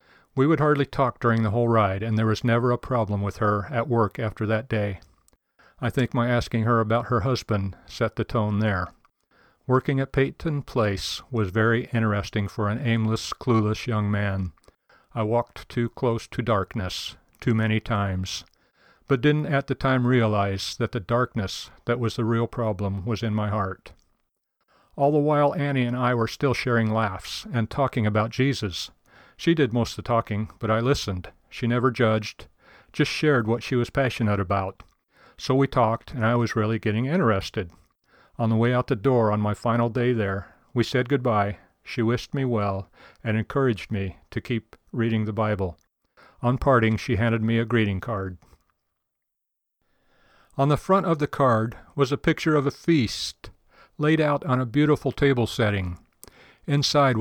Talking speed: 175 wpm